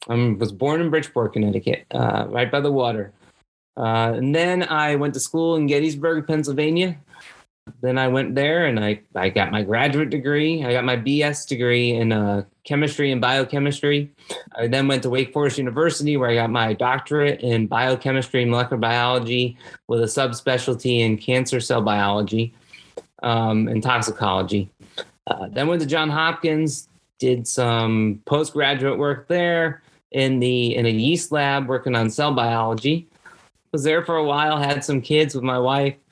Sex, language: male, English